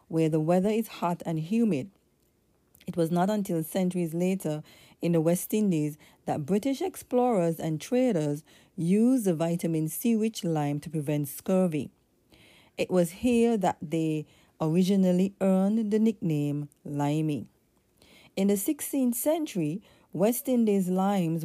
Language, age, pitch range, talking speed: English, 40-59, 160-210 Hz, 130 wpm